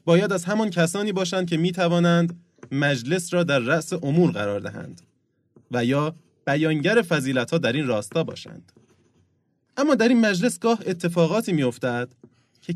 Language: Persian